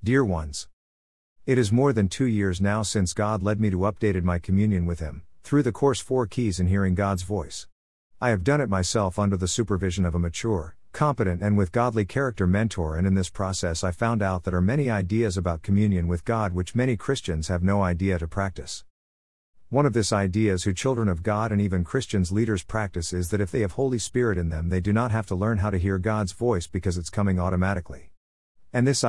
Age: 50-69